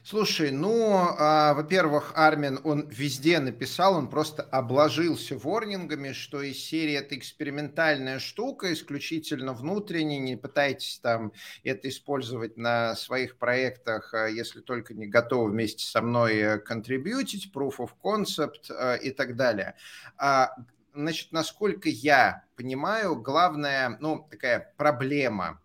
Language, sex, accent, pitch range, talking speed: Russian, male, native, 130-165 Hz, 115 wpm